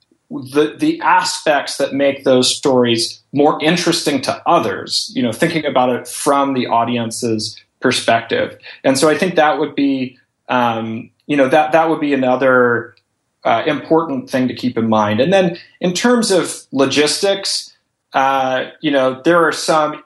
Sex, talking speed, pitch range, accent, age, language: male, 160 wpm, 125-160 Hz, American, 30-49, English